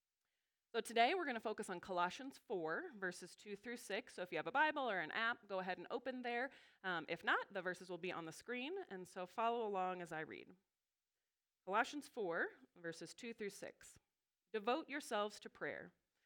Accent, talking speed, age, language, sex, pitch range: American, 200 wpm, 30-49, English, female, 175-235 Hz